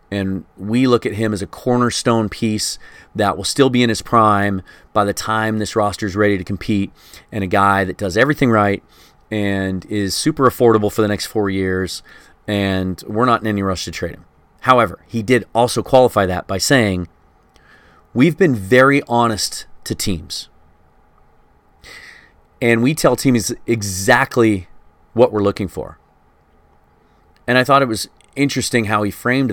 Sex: male